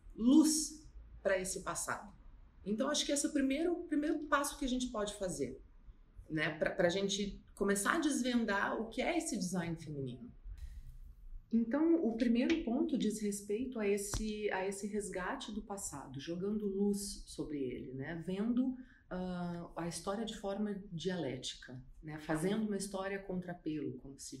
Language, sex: Portuguese, female